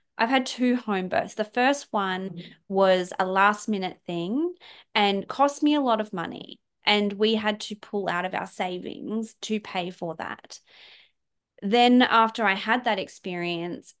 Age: 20-39